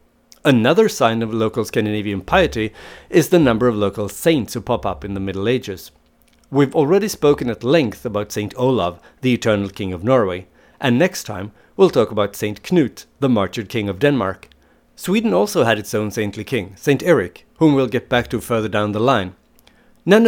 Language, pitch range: English, 105-140 Hz